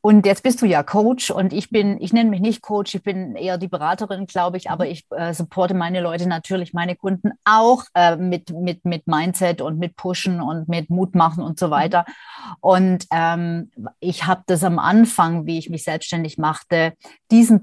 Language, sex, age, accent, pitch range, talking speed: German, female, 30-49, German, 170-195 Hz, 195 wpm